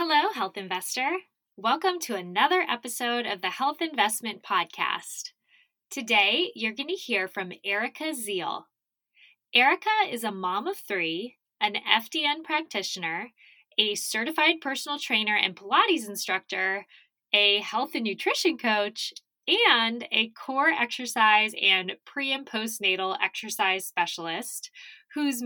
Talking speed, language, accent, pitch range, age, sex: 125 wpm, English, American, 205-320 Hz, 10-29, female